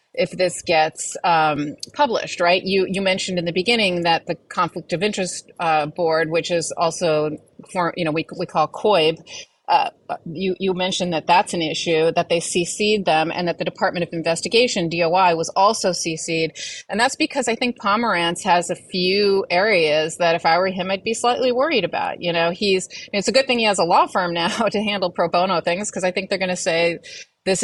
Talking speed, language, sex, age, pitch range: 210 wpm, English, female, 30-49, 170-205 Hz